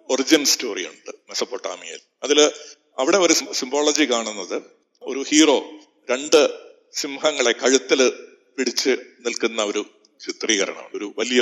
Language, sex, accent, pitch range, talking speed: Malayalam, male, native, 120-185 Hz, 105 wpm